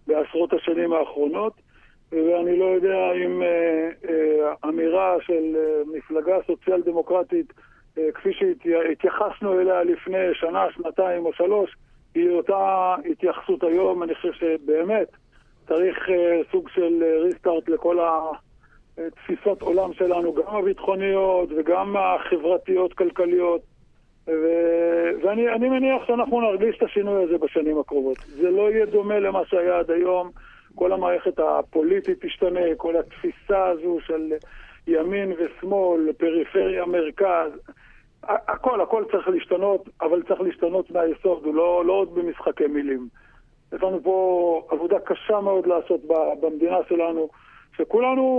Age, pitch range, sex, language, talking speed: 50-69, 165-200 Hz, male, Hebrew, 115 wpm